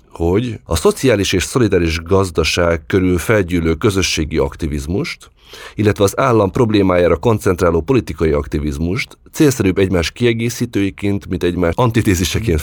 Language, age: Hungarian, 30-49